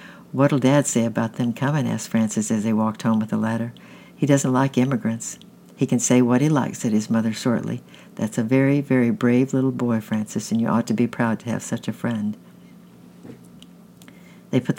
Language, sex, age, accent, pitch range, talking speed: English, female, 60-79, American, 115-135 Hz, 205 wpm